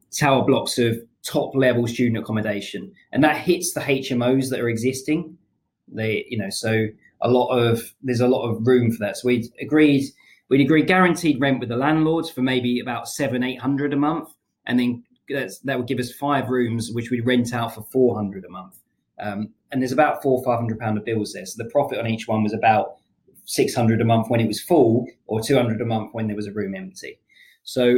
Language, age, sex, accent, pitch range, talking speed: Swedish, 20-39, male, British, 115-140 Hz, 220 wpm